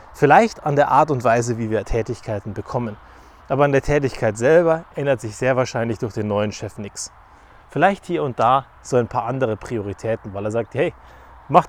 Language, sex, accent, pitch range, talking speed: German, male, German, 120-175 Hz, 195 wpm